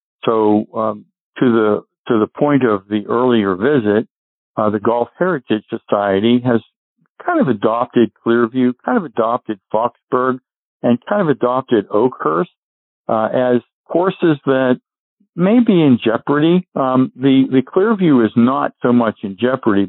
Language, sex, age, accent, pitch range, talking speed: English, male, 60-79, American, 110-135 Hz, 145 wpm